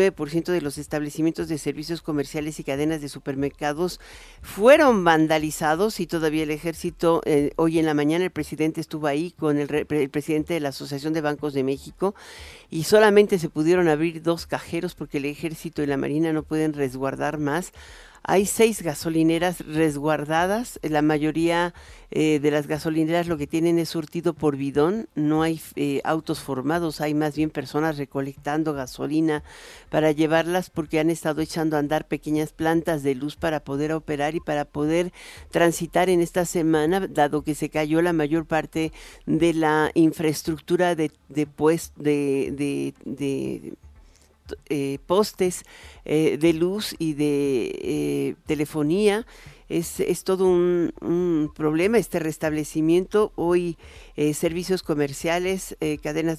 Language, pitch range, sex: Spanish, 150-170 Hz, male